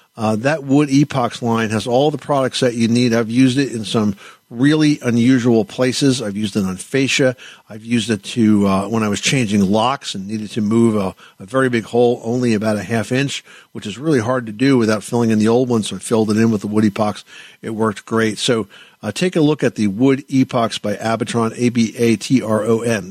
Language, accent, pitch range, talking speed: English, American, 105-125 Hz, 220 wpm